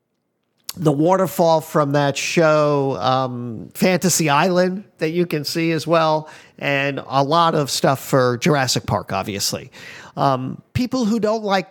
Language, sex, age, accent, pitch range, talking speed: English, male, 50-69, American, 140-185 Hz, 145 wpm